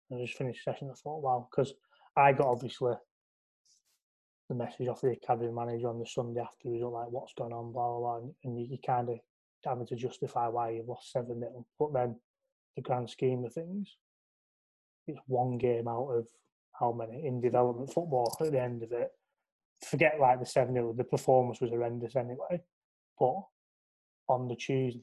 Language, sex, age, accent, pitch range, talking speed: English, male, 20-39, British, 125-140 Hz, 185 wpm